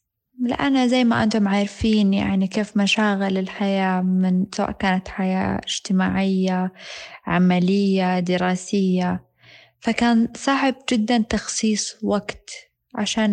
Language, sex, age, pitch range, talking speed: Arabic, female, 20-39, 195-240 Hz, 100 wpm